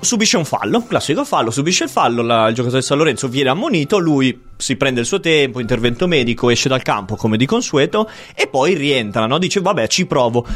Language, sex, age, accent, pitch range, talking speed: Italian, male, 30-49, native, 125-170 Hz, 205 wpm